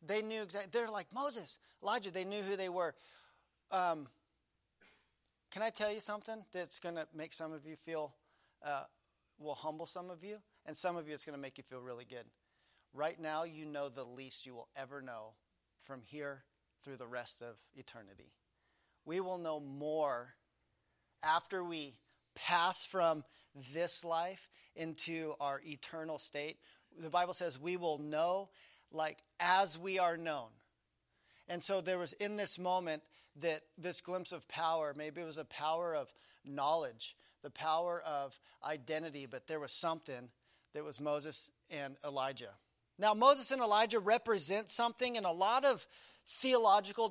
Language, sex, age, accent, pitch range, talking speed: English, male, 40-59, American, 150-195 Hz, 165 wpm